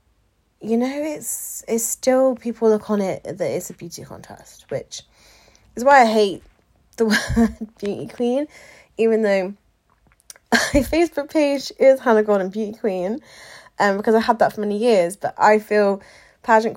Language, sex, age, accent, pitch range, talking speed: English, female, 20-39, British, 170-225 Hz, 160 wpm